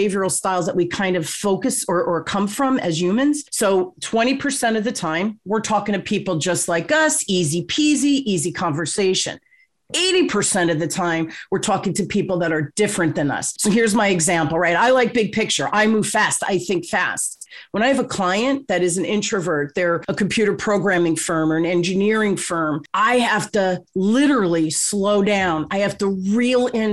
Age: 40-59